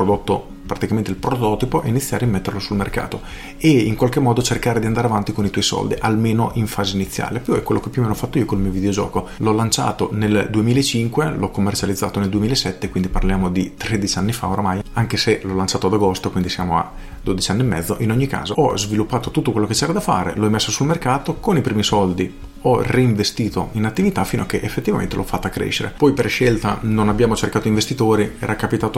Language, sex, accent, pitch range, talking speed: Italian, male, native, 100-120 Hz, 220 wpm